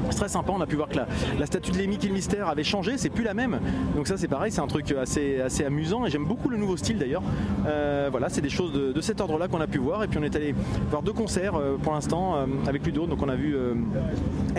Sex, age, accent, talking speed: male, 30-49, French, 300 wpm